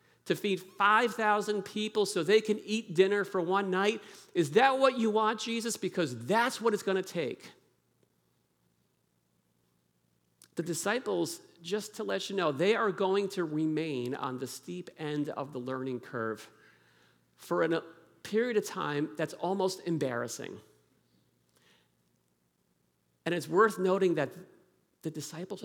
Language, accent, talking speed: Russian, American, 140 wpm